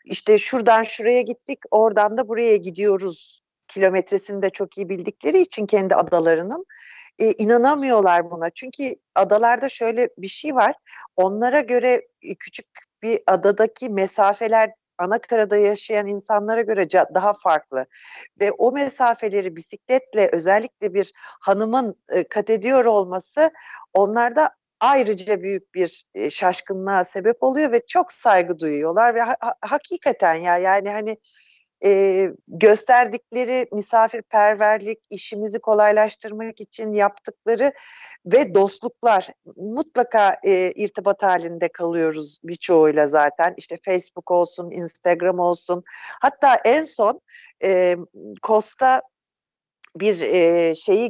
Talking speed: 110 wpm